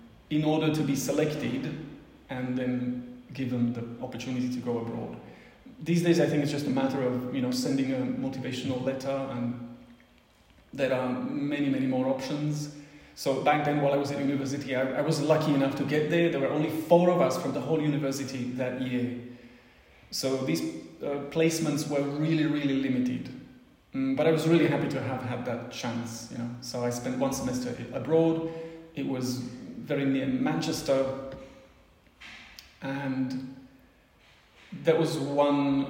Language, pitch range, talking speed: Slovak, 125-155 Hz, 165 wpm